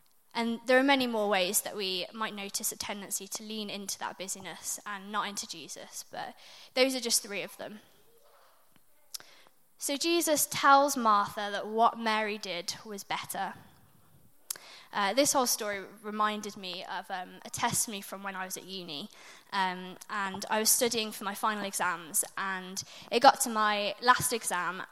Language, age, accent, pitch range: English, 20-39, British, 195-225 Hz